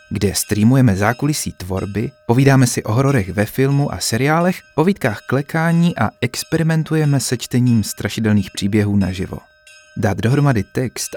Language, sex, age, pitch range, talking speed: Czech, male, 30-49, 100-145 Hz, 130 wpm